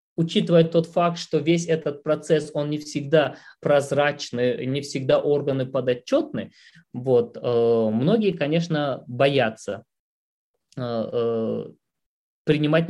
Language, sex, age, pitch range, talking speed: Russian, male, 20-39, 130-170 Hz, 90 wpm